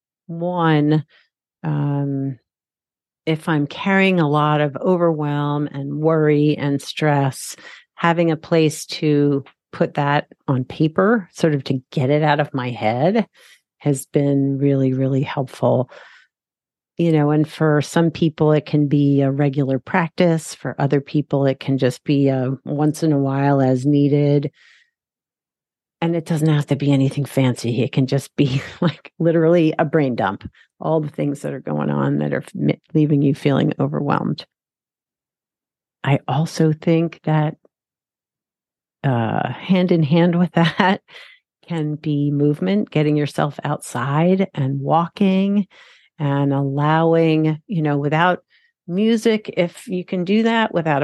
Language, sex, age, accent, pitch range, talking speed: English, female, 40-59, American, 140-170 Hz, 140 wpm